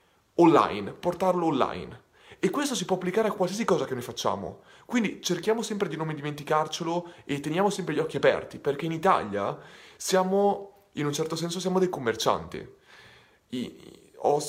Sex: male